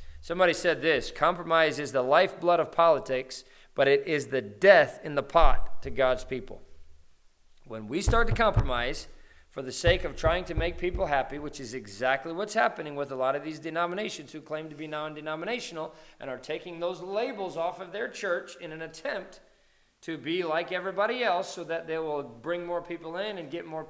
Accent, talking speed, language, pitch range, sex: American, 195 wpm, English, 135-170 Hz, male